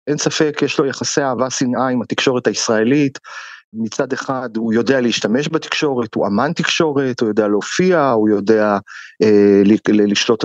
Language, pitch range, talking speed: Hebrew, 120-155 Hz, 160 wpm